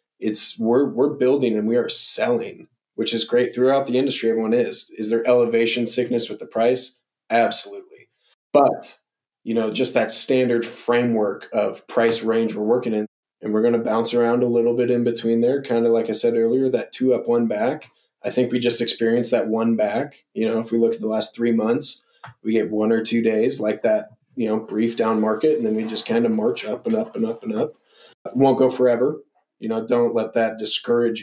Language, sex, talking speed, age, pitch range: English, male, 220 wpm, 20-39, 115-125 Hz